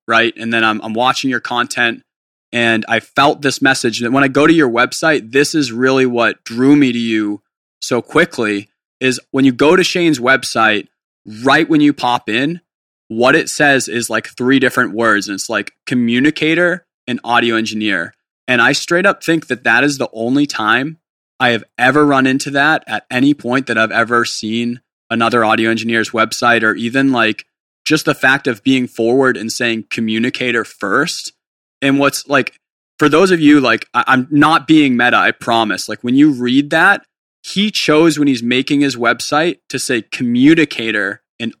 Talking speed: 185 wpm